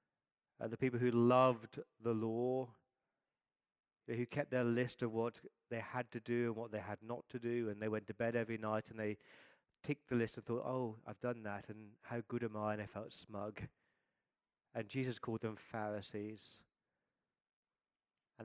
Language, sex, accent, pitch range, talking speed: English, male, British, 115-135 Hz, 185 wpm